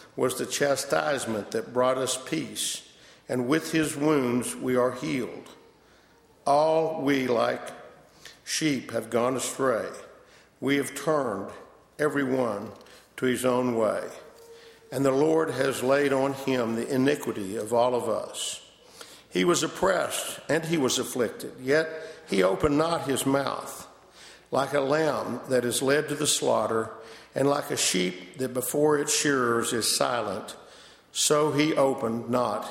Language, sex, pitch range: English, male, 125-150 Hz